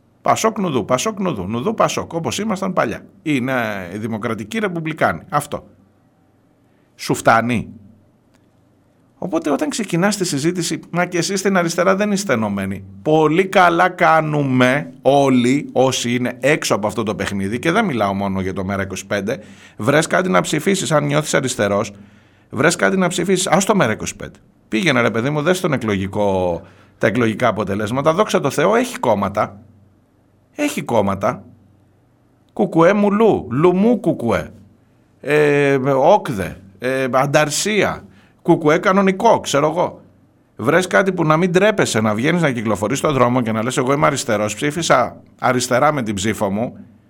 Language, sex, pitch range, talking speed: Greek, male, 105-175 Hz, 145 wpm